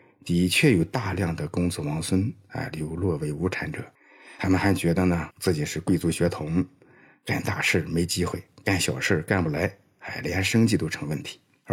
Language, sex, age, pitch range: Chinese, male, 50-69, 85-120 Hz